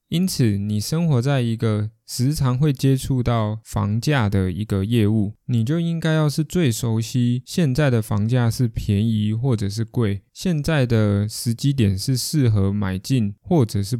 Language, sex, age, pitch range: Chinese, male, 20-39, 105-140 Hz